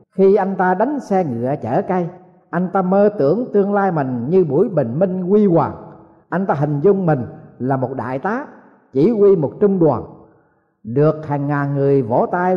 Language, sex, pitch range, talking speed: Vietnamese, male, 130-190 Hz, 195 wpm